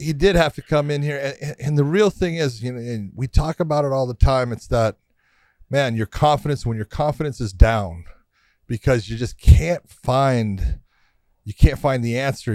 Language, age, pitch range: English, 40-59, 115-150 Hz